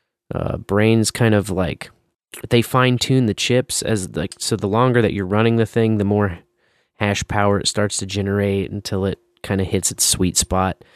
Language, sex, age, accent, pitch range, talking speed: English, male, 30-49, American, 100-115 Hz, 190 wpm